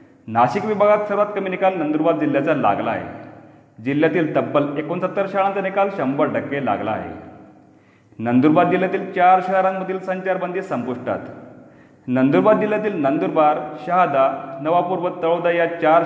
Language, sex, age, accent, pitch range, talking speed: Marathi, male, 40-59, native, 145-180 Hz, 120 wpm